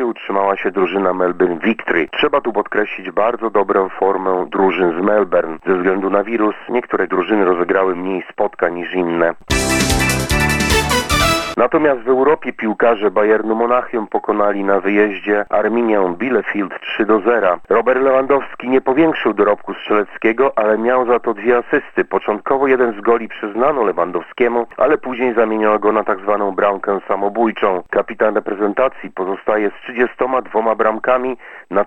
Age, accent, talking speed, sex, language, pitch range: 40-59, native, 135 wpm, male, Polish, 100-125 Hz